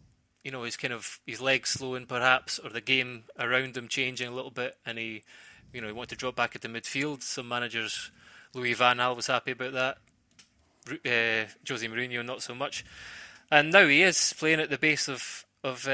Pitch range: 120-140 Hz